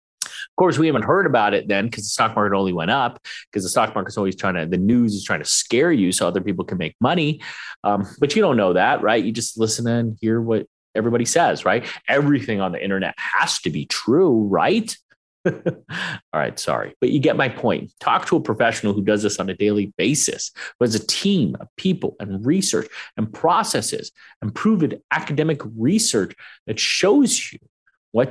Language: English